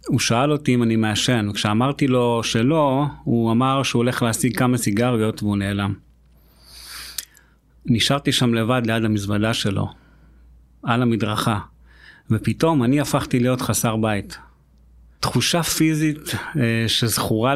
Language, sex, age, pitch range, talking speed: Hebrew, male, 30-49, 110-130 Hz, 120 wpm